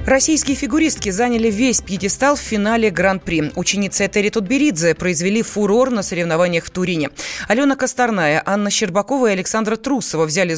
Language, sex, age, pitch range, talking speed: Russian, female, 20-39, 175-230 Hz, 140 wpm